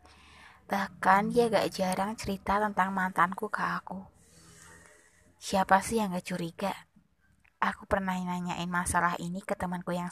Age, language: 20-39, Indonesian